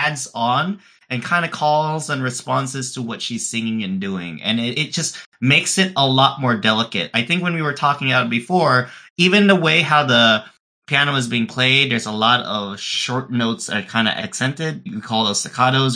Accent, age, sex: American, 30-49, male